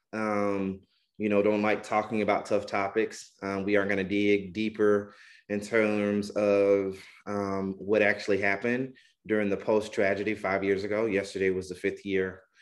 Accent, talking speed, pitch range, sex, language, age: American, 160 wpm, 100-110 Hz, male, English, 30-49